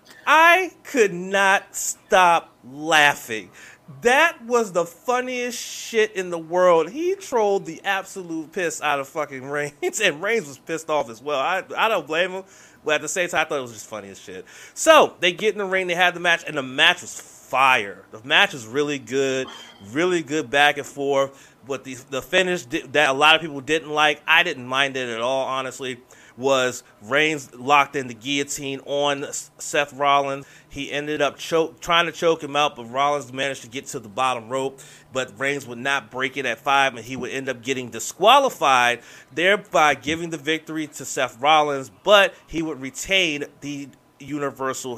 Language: English